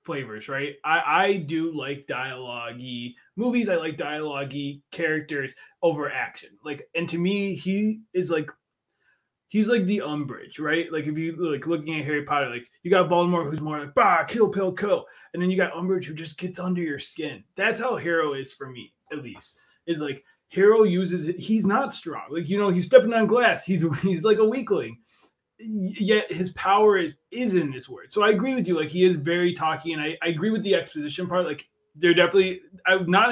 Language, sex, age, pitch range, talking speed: English, male, 20-39, 145-195 Hz, 205 wpm